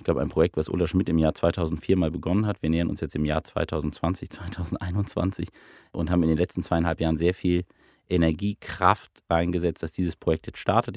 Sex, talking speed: male, 200 wpm